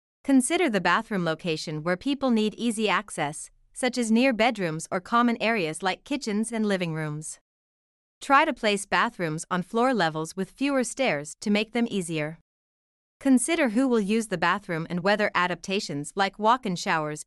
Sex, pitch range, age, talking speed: female, 170-230 Hz, 30-49, 165 wpm